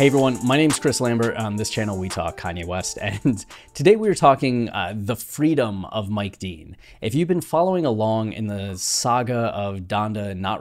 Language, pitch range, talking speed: English, 95-120 Hz, 205 wpm